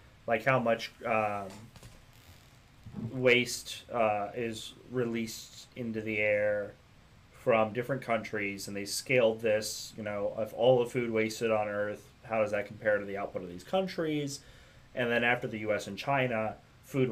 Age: 30-49